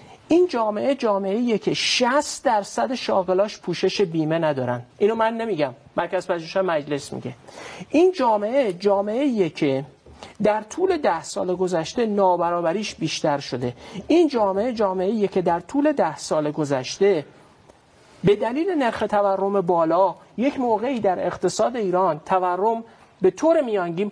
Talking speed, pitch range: 140 wpm, 155-215 Hz